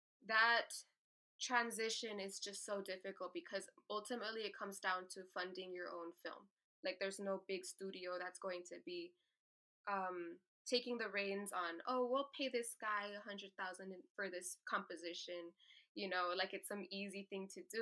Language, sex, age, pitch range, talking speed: English, female, 10-29, 185-220 Hz, 160 wpm